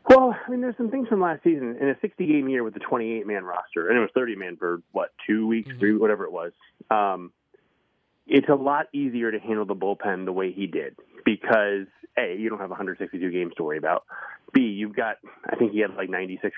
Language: English